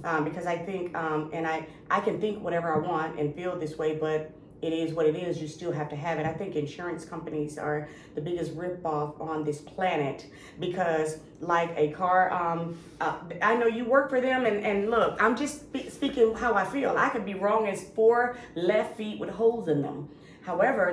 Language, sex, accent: English, female, American